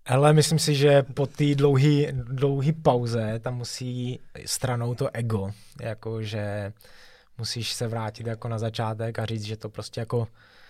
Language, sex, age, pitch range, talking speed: Czech, male, 20-39, 115-125 Hz, 145 wpm